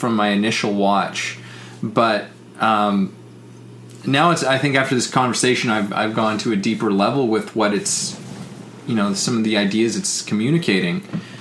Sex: male